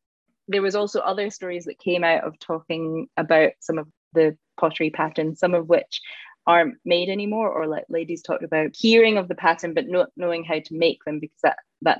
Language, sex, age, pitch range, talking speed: English, female, 20-39, 155-180 Hz, 205 wpm